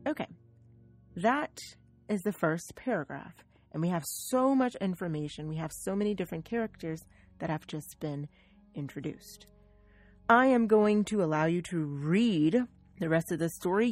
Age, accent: 30-49, American